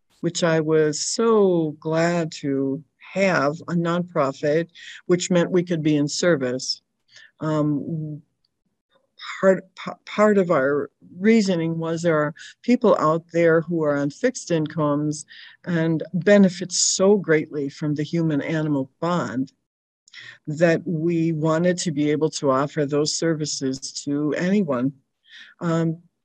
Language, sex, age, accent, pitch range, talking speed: English, female, 60-79, American, 155-205 Hz, 130 wpm